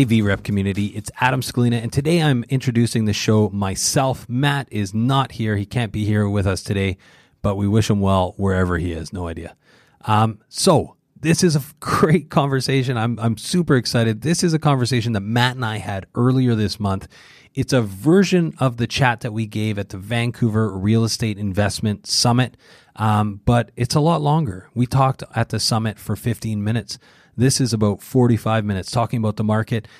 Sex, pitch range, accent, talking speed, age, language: male, 105-135 Hz, American, 190 wpm, 30-49, English